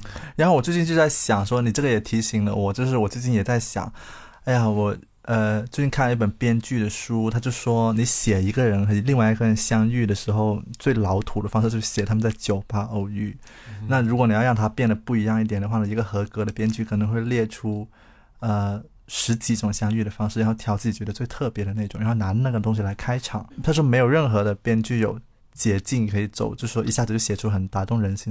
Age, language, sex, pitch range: 20-39, Chinese, male, 105-120 Hz